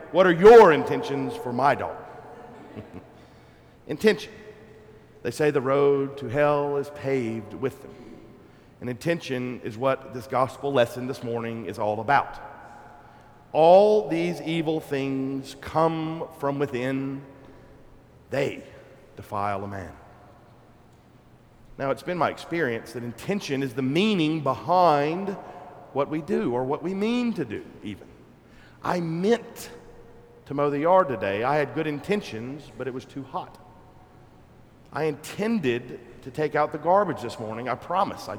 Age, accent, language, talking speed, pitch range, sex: 50-69, American, English, 140 wpm, 125-175 Hz, male